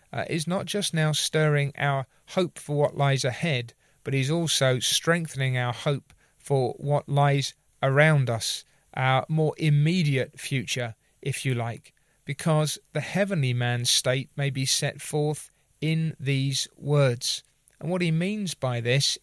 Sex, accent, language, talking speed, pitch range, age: male, British, English, 150 wpm, 135-170 Hz, 40-59